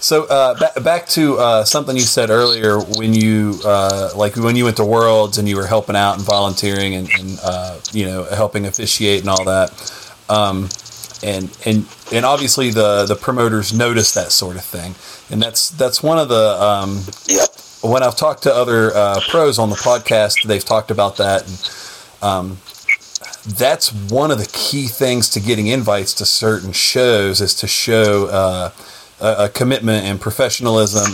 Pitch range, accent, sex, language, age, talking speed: 100-120 Hz, American, male, English, 30-49, 175 wpm